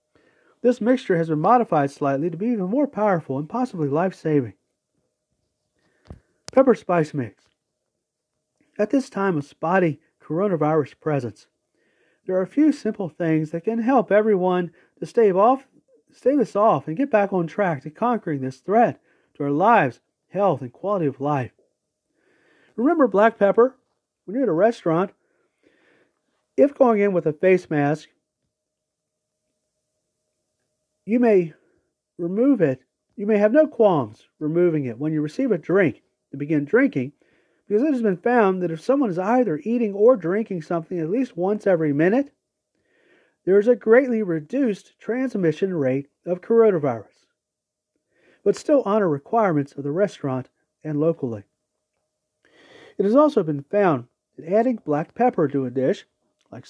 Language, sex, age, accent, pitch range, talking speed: English, male, 40-59, American, 150-230 Hz, 150 wpm